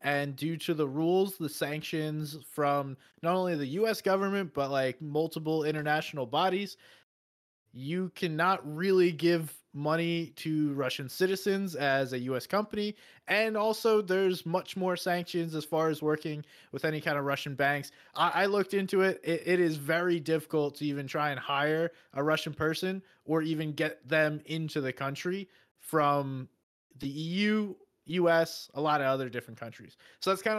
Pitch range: 145-185 Hz